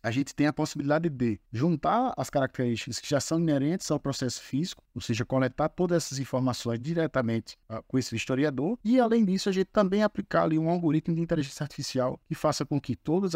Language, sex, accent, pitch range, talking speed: Portuguese, male, Brazilian, 125-150 Hz, 200 wpm